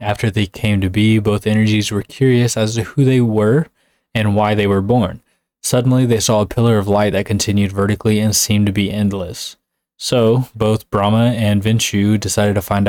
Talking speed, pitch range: 195 wpm, 100-115 Hz